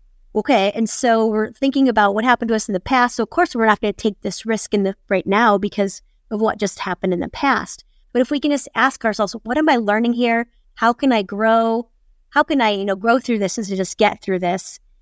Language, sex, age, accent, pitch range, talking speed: English, female, 30-49, American, 205-250 Hz, 260 wpm